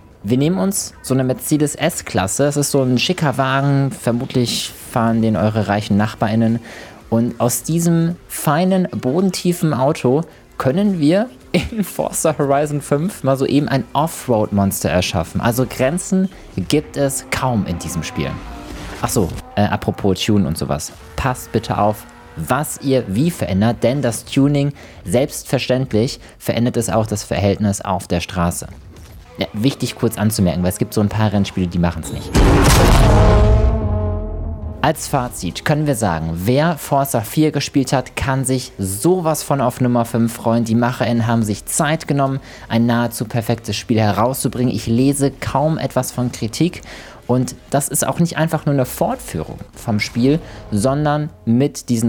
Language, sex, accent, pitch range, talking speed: German, male, German, 105-140 Hz, 155 wpm